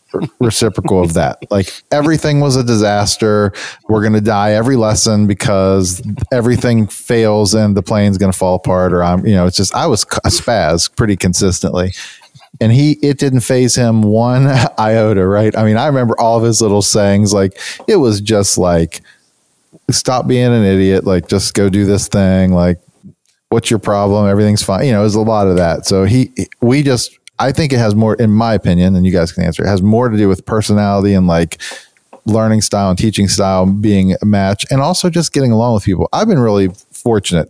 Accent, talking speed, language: American, 200 wpm, English